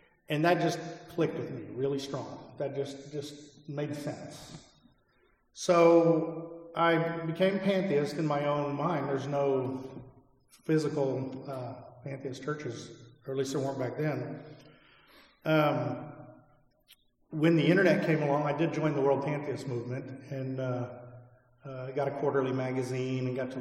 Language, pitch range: English, 130-150 Hz